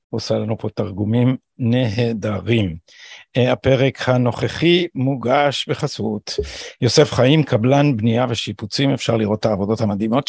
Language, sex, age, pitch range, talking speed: Hebrew, male, 50-69, 115-155 Hz, 110 wpm